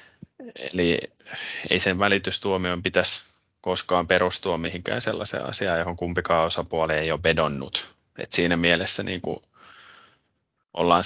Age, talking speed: 20-39, 110 wpm